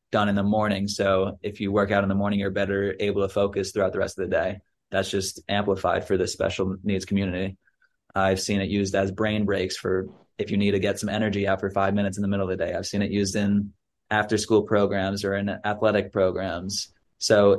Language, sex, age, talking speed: English, male, 20-39, 230 wpm